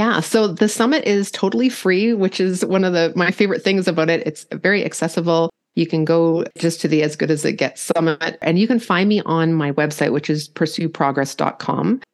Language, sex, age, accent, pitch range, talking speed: English, female, 30-49, American, 155-185 Hz, 215 wpm